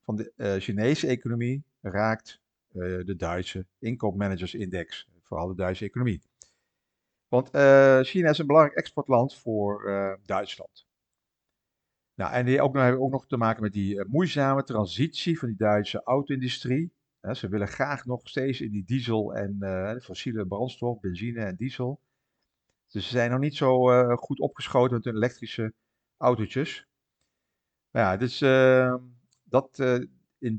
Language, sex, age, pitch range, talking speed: Dutch, male, 50-69, 105-130 Hz, 155 wpm